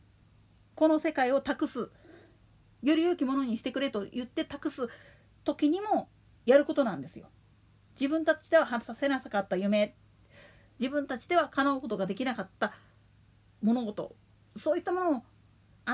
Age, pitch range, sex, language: 40-59, 200-315 Hz, female, Japanese